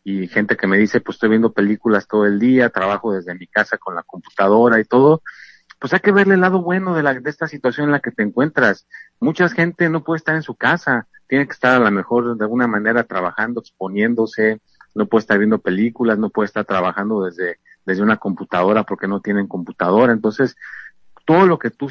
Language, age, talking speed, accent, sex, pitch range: Spanish, 50-69, 215 wpm, Mexican, male, 105-150 Hz